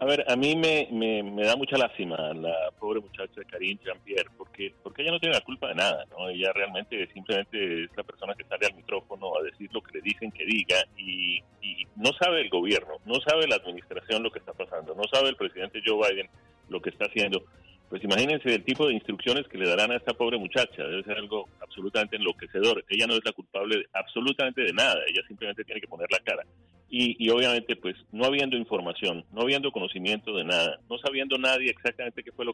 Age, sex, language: 40-59, male, Spanish